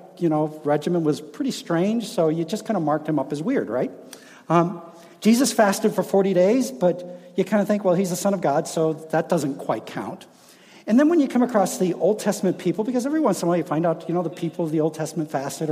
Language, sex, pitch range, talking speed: English, male, 155-230 Hz, 255 wpm